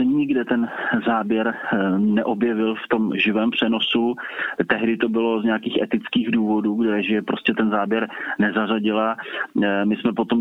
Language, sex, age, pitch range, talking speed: Slovak, male, 30-49, 105-115 Hz, 135 wpm